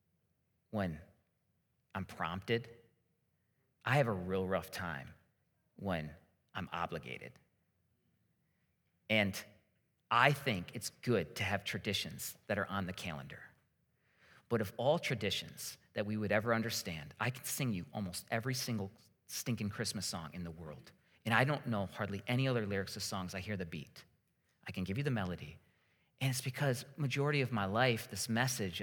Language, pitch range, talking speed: English, 95-130 Hz, 160 wpm